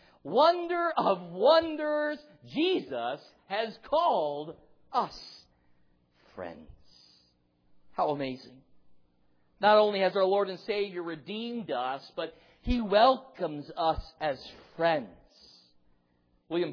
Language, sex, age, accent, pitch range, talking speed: English, male, 50-69, American, 150-235 Hz, 95 wpm